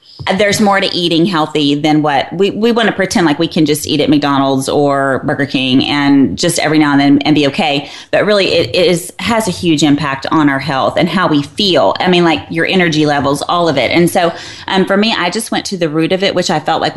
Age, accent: 30-49, American